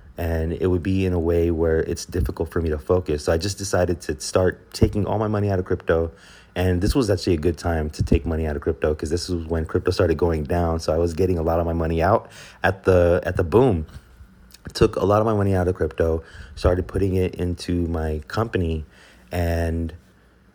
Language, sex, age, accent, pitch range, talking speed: English, male, 30-49, American, 85-95 Hz, 230 wpm